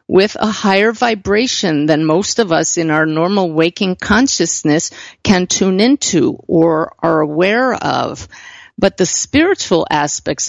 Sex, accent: female, American